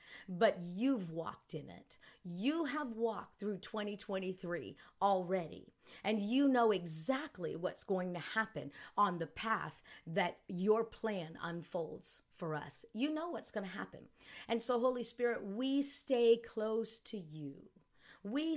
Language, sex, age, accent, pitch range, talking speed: English, female, 50-69, American, 180-240 Hz, 140 wpm